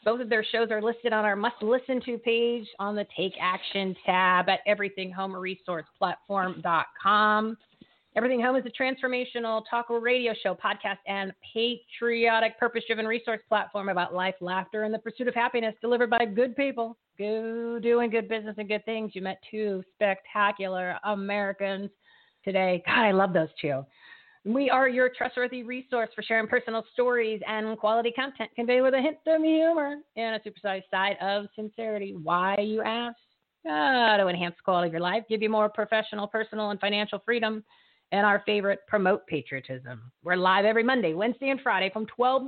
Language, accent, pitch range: English, American, 195-240 Hz